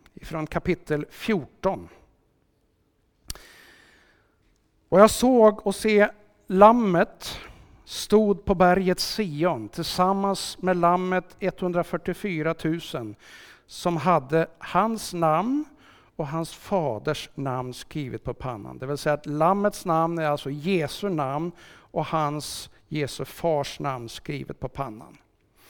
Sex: male